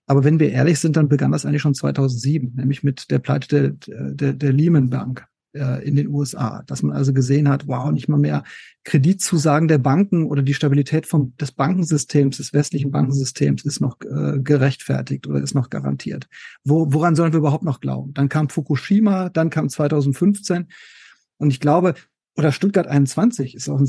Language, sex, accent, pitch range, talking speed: German, male, German, 140-170 Hz, 180 wpm